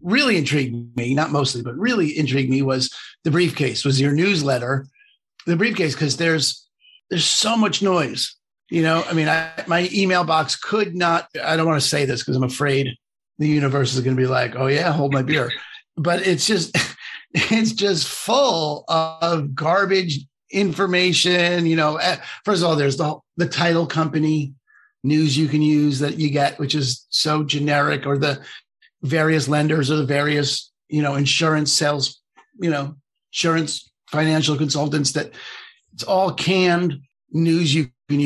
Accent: American